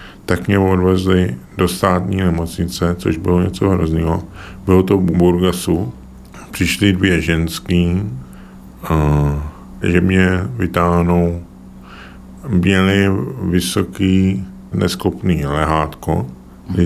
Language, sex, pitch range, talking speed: Czech, male, 85-100 Hz, 95 wpm